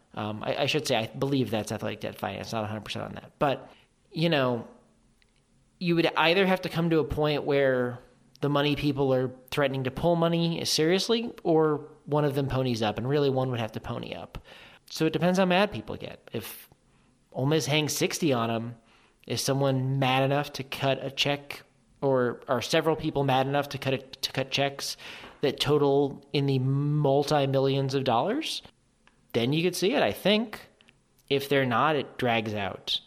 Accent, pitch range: American, 125-155 Hz